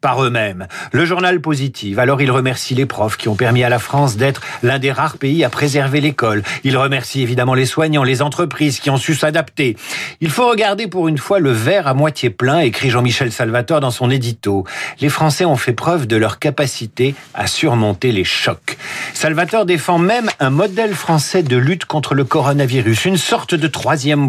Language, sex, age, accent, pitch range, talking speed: French, male, 50-69, French, 120-160 Hz, 205 wpm